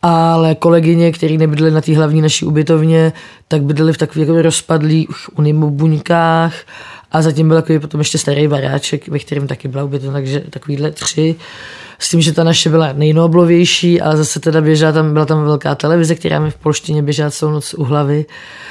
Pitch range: 150-165 Hz